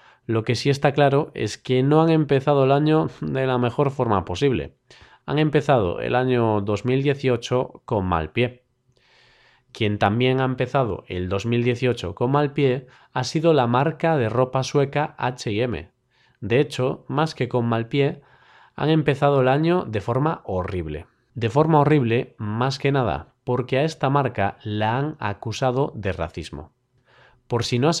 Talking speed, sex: 160 wpm, male